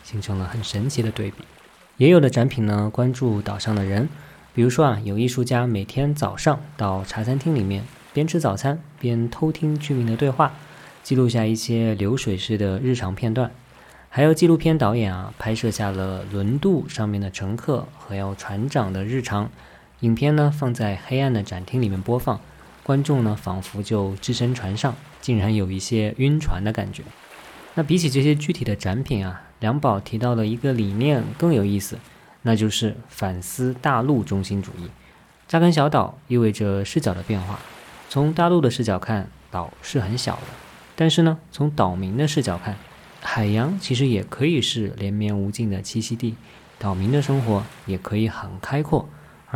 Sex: male